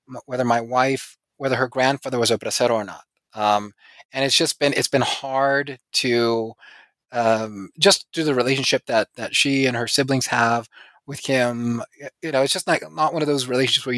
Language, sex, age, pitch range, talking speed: English, male, 20-39, 120-140 Hz, 195 wpm